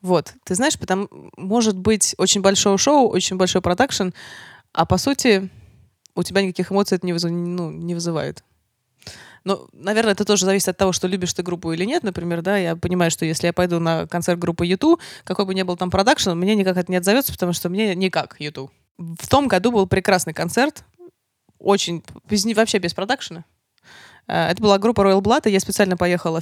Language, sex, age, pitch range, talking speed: Russian, female, 20-39, 170-200 Hz, 195 wpm